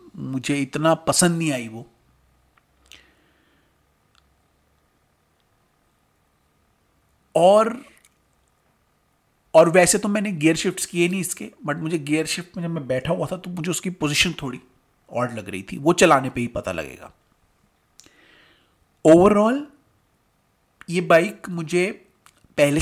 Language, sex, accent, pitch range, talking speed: Hindi, male, native, 130-175 Hz, 120 wpm